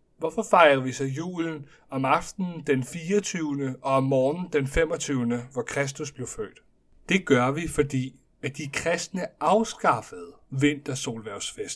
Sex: male